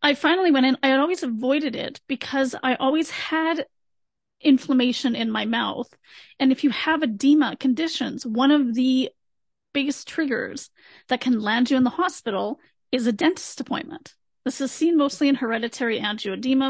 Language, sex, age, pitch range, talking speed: English, female, 30-49, 235-280 Hz, 165 wpm